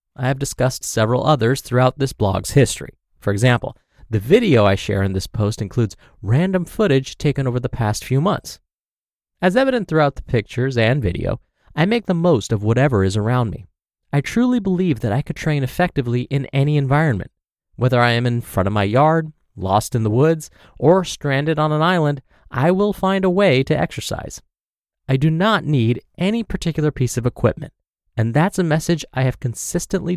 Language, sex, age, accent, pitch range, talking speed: English, male, 30-49, American, 120-175 Hz, 185 wpm